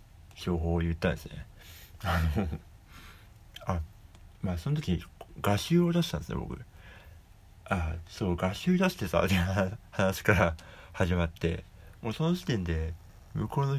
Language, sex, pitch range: Japanese, male, 85-105 Hz